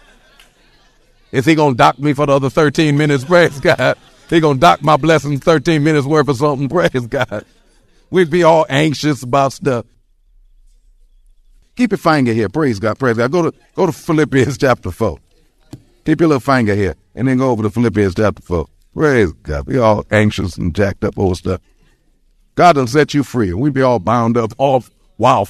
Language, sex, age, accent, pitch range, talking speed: English, male, 50-69, American, 100-150 Hz, 195 wpm